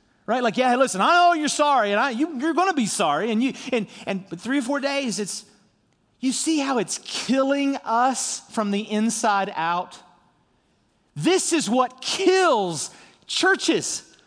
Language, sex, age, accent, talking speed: English, male, 40-59, American, 175 wpm